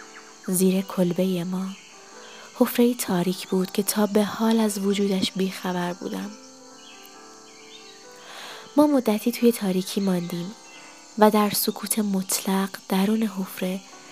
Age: 20-39